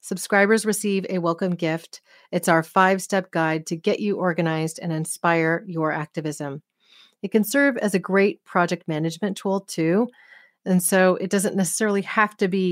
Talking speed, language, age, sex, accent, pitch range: 165 wpm, English, 40-59, female, American, 165-200 Hz